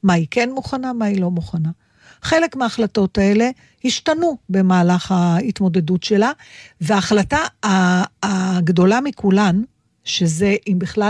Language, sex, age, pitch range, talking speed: Hebrew, female, 50-69, 180-230 Hz, 115 wpm